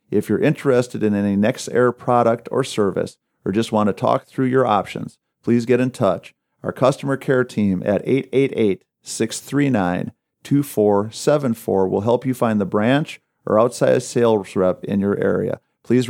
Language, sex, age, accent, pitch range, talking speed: English, male, 40-59, American, 105-130 Hz, 165 wpm